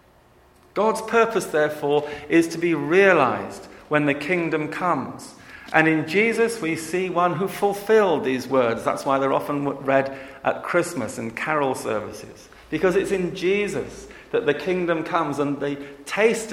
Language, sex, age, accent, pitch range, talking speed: English, male, 50-69, British, 140-180 Hz, 155 wpm